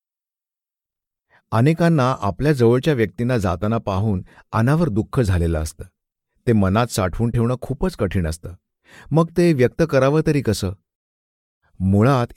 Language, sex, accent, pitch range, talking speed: Marathi, male, native, 95-135 Hz, 115 wpm